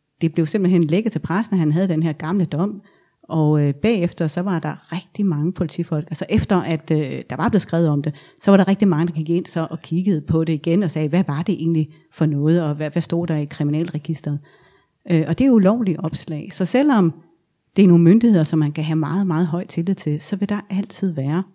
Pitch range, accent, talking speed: 155-185 Hz, native, 240 wpm